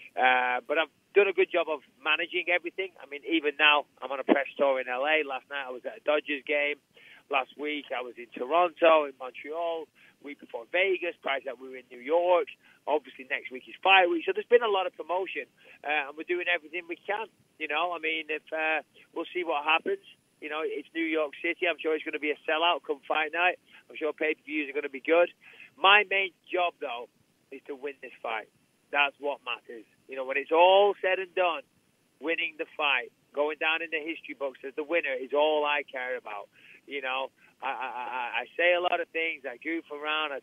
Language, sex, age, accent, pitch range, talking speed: English, male, 30-49, British, 140-175 Hz, 230 wpm